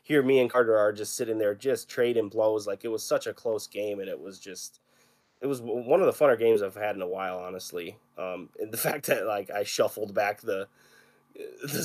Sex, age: male, 20-39